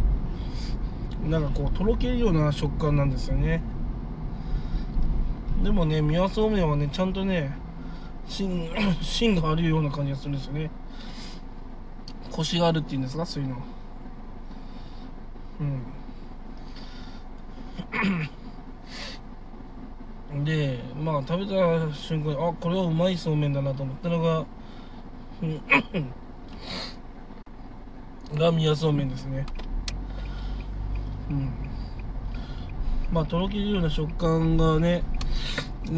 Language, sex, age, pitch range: Japanese, male, 20-39, 135-165 Hz